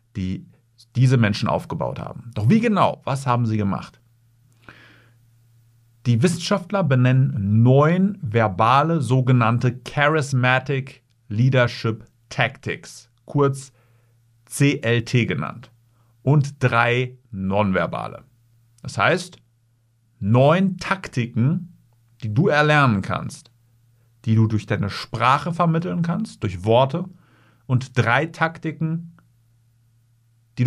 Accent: German